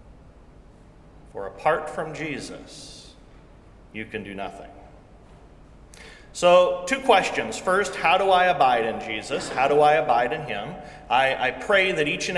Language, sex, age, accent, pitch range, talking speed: English, male, 40-59, American, 155-240 Hz, 145 wpm